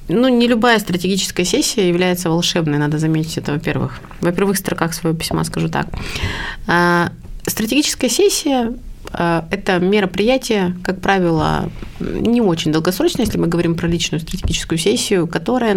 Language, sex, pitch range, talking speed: Russian, female, 160-190 Hz, 150 wpm